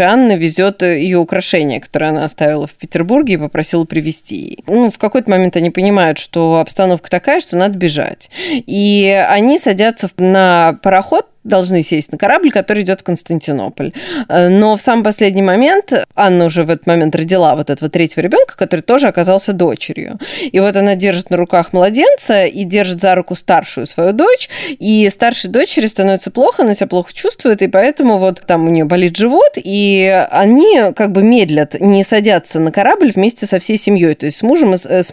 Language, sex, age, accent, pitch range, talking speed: Russian, female, 20-39, native, 165-205 Hz, 180 wpm